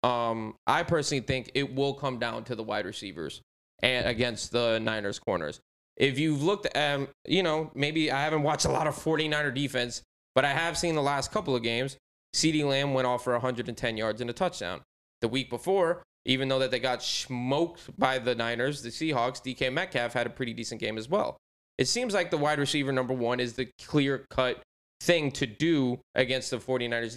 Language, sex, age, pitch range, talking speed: English, male, 20-39, 120-145 Hz, 205 wpm